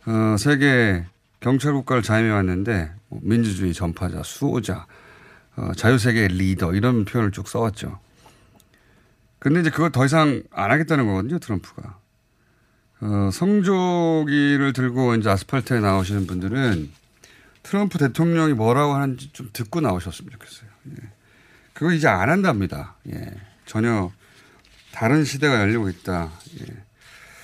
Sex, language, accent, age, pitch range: male, Korean, native, 30-49, 100-135 Hz